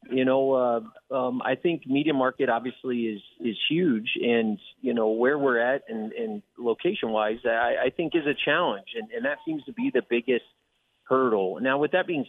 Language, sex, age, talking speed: English, male, 30-49, 200 wpm